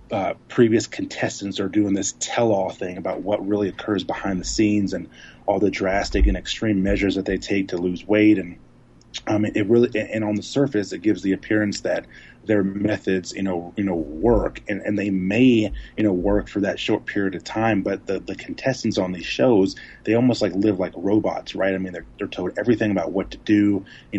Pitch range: 95-105 Hz